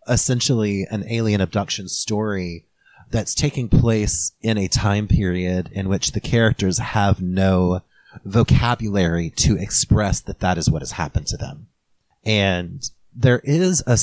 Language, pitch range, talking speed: English, 90-110 Hz, 140 wpm